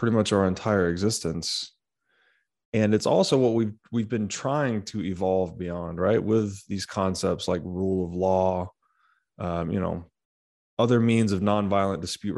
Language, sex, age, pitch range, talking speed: English, male, 20-39, 95-120 Hz, 155 wpm